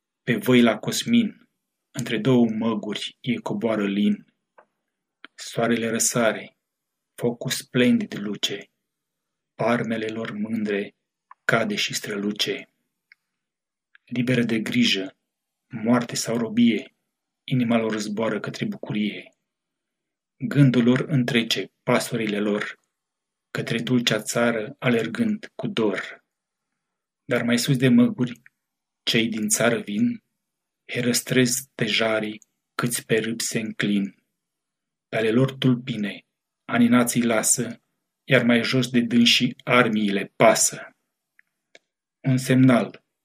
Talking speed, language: 105 wpm, Romanian